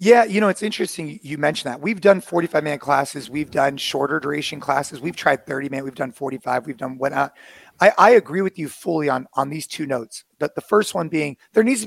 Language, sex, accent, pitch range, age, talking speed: English, male, American, 140-185 Hz, 30-49, 240 wpm